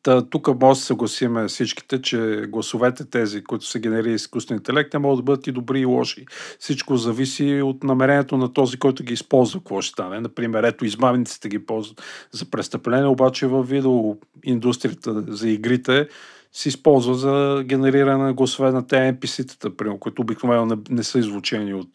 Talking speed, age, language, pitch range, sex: 170 wpm, 40-59, Bulgarian, 120-140 Hz, male